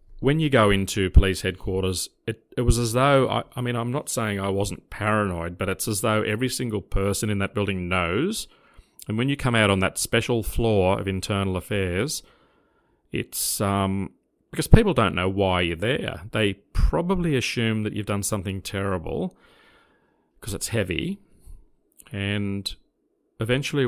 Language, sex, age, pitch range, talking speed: English, male, 40-59, 95-115 Hz, 165 wpm